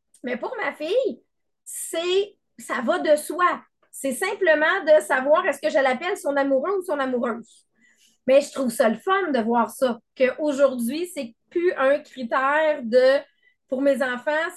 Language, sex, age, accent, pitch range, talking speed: English, female, 30-49, Canadian, 255-320 Hz, 170 wpm